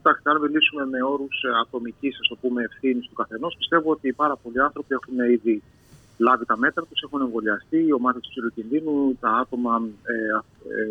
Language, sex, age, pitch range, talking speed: Greek, male, 30-49, 115-150 Hz, 165 wpm